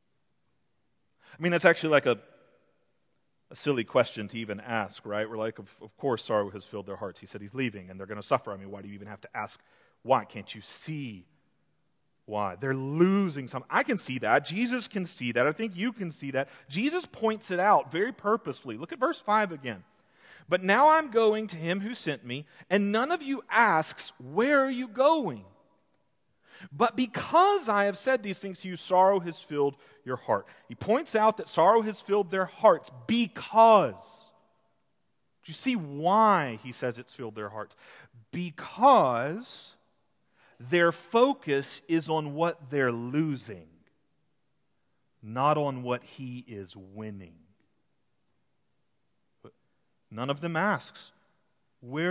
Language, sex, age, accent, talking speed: English, male, 30-49, American, 165 wpm